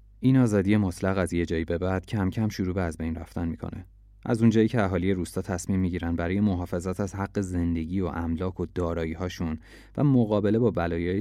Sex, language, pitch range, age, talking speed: male, Persian, 90-105 Hz, 30-49, 195 wpm